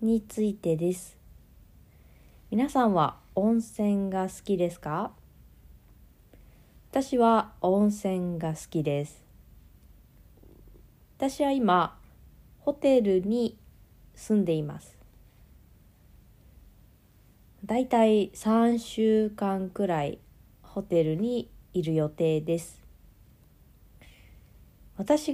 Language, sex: Japanese, female